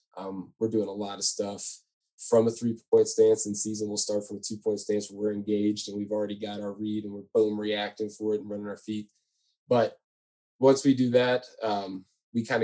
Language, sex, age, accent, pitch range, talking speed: English, male, 20-39, American, 105-110 Hz, 230 wpm